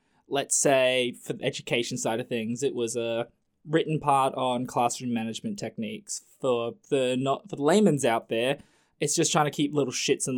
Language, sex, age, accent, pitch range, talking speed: English, male, 20-39, Australian, 130-160 Hz, 190 wpm